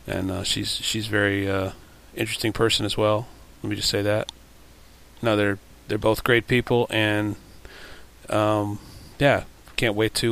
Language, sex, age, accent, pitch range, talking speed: English, male, 30-49, American, 100-115 Hz, 155 wpm